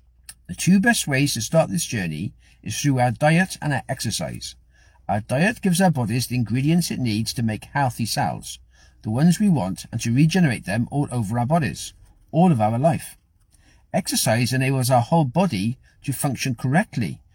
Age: 50-69